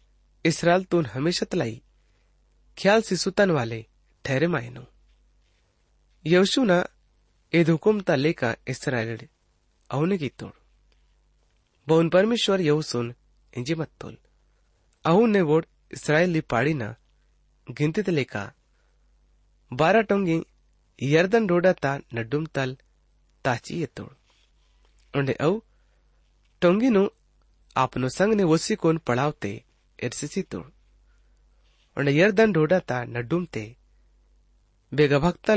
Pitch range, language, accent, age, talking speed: 110-175 Hz, English, Indian, 30-49, 50 wpm